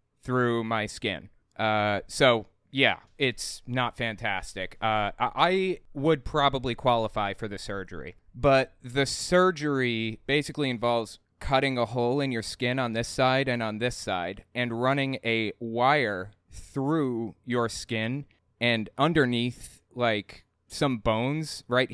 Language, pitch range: English, 105-130 Hz